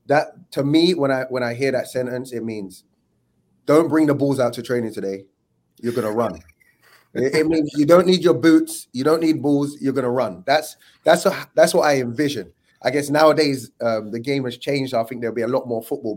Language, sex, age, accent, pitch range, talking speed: English, male, 20-39, British, 120-155 Hz, 225 wpm